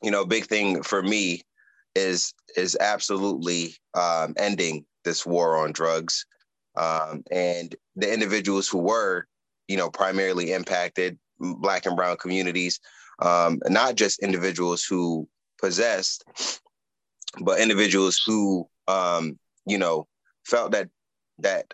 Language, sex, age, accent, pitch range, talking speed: English, male, 20-39, American, 85-95 Hz, 120 wpm